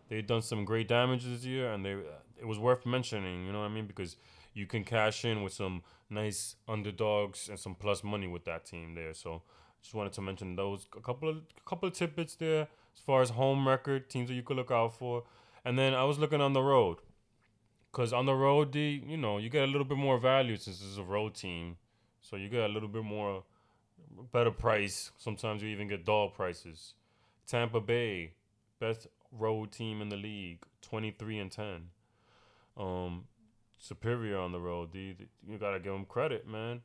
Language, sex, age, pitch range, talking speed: English, male, 20-39, 100-120 Hz, 210 wpm